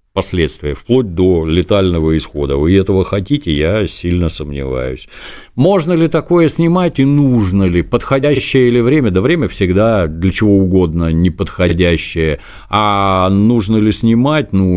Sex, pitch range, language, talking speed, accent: male, 90-115 Hz, Russian, 135 wpm, native